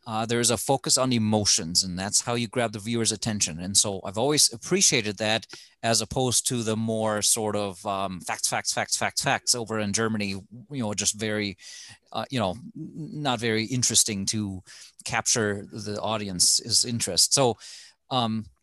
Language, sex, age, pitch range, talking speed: English, male, 30-49, 105-125 Hz, 170 wpm